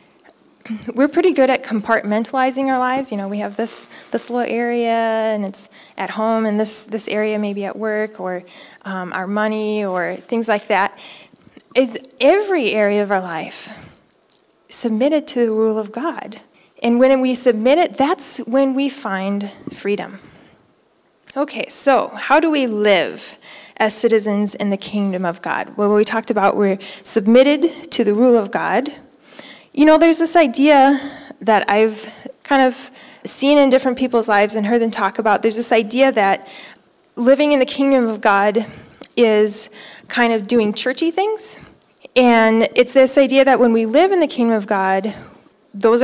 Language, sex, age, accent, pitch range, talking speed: English, female, 20-39, American, 210-265 Hz, 170 wpm